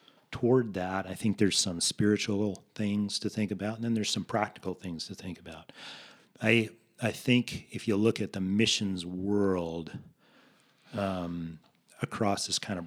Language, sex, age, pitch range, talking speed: English, male, 40-59, 90-105 Hz, 165 wpm